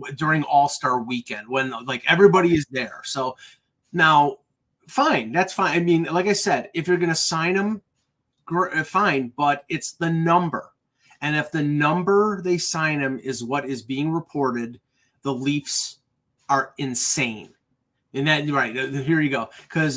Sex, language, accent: male, English, American